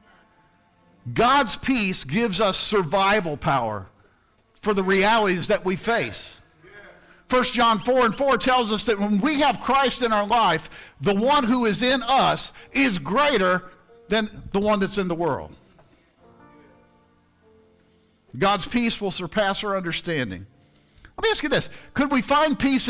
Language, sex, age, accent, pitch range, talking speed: English, male, 50-69, American, 185-245 Hz, 150 wpm